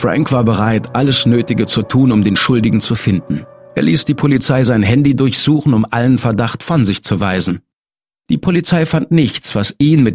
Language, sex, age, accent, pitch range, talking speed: German, male, 50-69, German, 110-155 Hz, 195 wpm